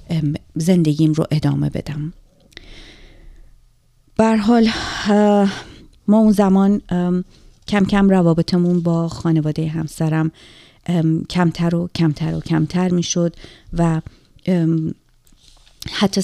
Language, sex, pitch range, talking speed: Persian, female, 155-180 Hz, 90 wpm